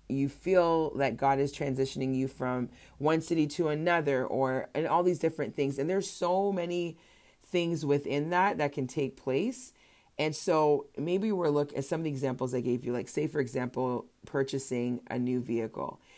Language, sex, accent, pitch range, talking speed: English, female, American, 130-160 Hz, 190 wpm